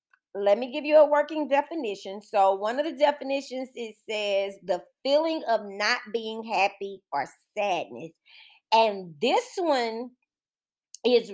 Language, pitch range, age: English, 180-245 Hz, 40-59